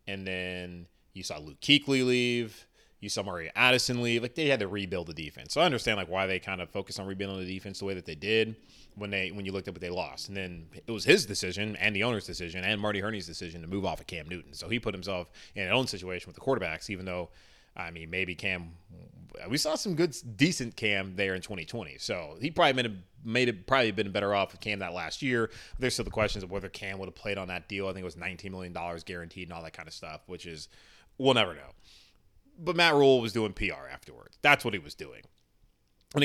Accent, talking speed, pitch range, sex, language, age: American, 255 wpm, 95-140 Hz, male, English, 20-39